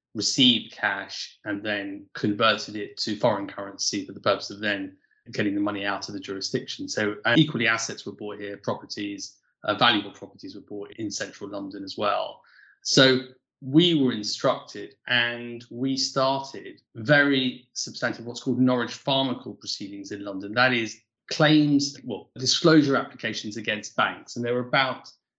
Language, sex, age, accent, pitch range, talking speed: English, male, 20-39, British, 105-130 Hz, 160 wpm